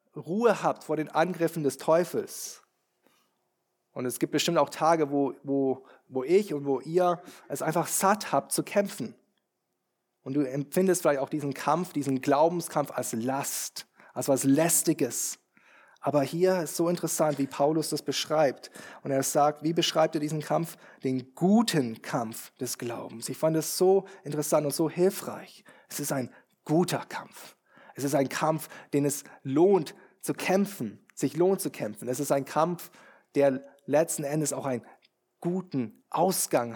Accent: German